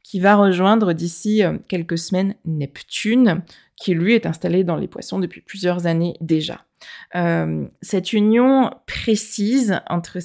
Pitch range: 170-210 Hz